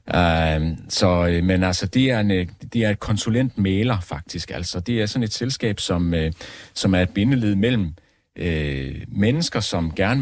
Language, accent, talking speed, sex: Danish, native, 135 wpm, male